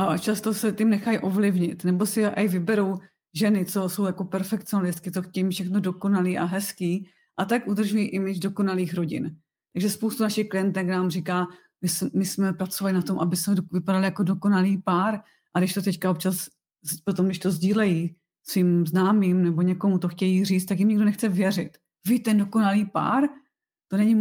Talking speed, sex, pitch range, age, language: 180 wpm, female, 185-210 Hz, 30-49, Czech